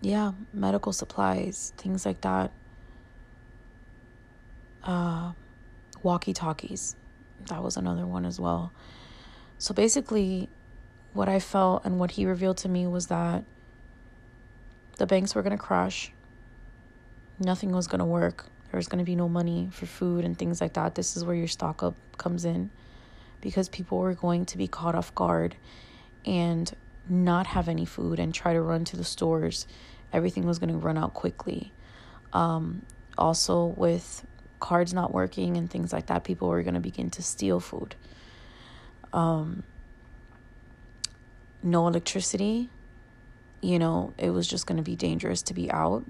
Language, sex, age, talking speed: English, female, 20-39, 155 wpm